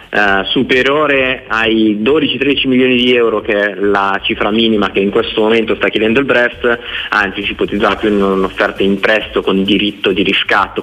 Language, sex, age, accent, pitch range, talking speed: Italian, male, 30-49, native, 100-125 Hz, 175 wpm